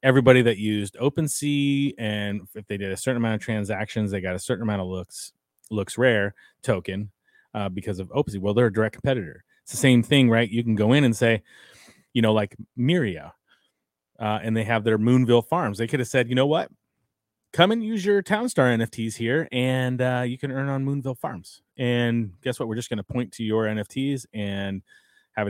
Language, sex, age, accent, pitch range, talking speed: English, male, 30-49, American, 105-125 Hz, 210 wpm